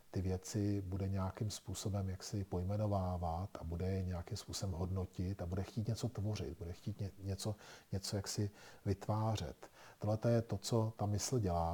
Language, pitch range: Czech, 95-110 Hz